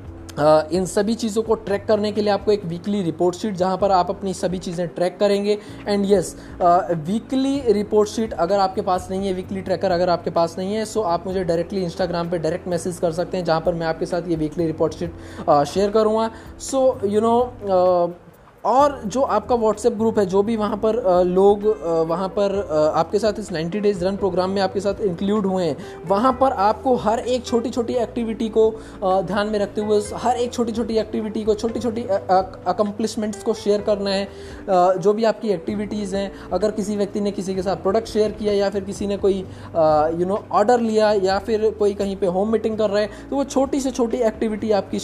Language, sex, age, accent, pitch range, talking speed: Hindi, male, 20-39, native, 180-220 Hz, 215 wpm